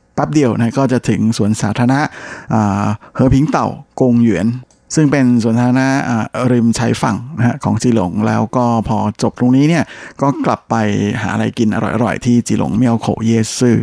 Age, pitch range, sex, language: 20-39, 110-130 Hz, male, Thai